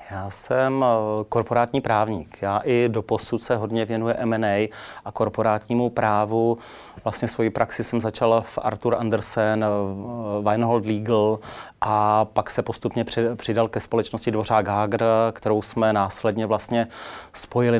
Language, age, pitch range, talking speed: Czech, 30-49, 110-120 Hz, 130 wpm